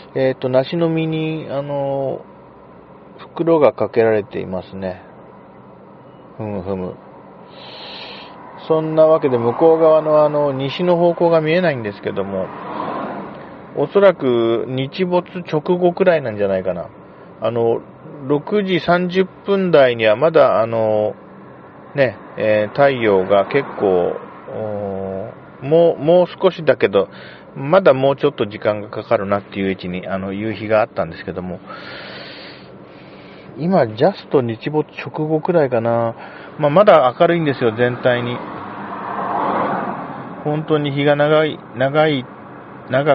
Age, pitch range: 40-59, 110-155 Hz